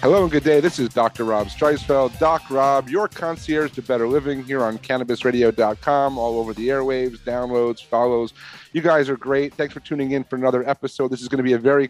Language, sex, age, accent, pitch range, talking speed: English, male, 40-59, American, 125-150 Hz, 215 wpm